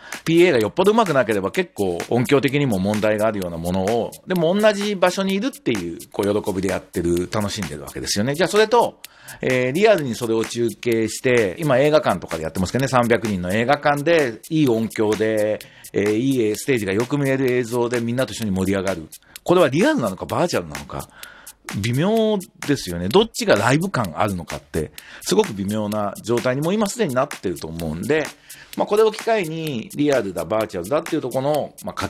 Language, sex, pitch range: Japanese, male, 100-160 Hz